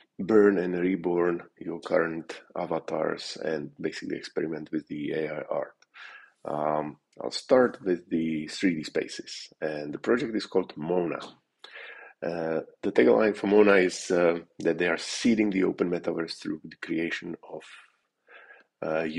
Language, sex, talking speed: English, male, 140 wpm